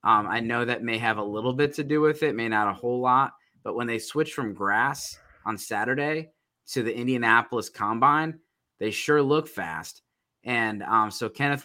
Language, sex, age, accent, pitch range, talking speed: English, male, 20-39, American, 110-130 Hz, 195 wpm